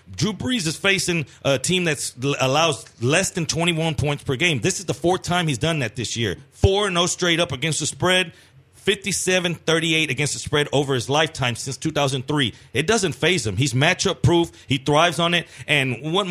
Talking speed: 195 wpm